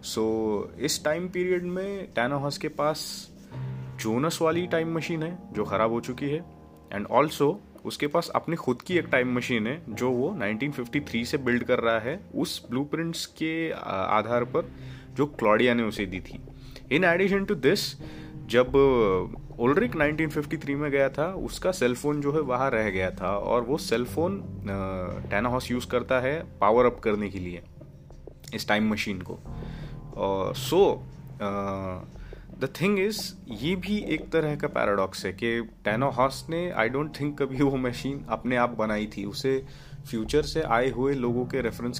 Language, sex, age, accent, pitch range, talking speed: Hindi, male, 30-49, native, 110-145 Hz, 165 wpm